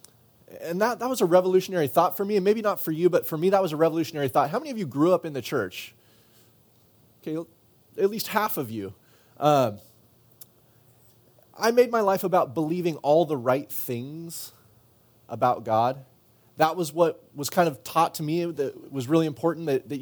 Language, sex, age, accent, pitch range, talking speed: English, male, 30-49, American, 120-170 Hz, 195 wpm